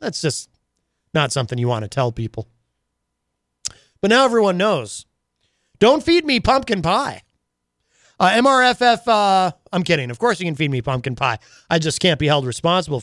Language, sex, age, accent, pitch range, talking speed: English, male, 30-49, American, 125-200 Hz, 170 wpm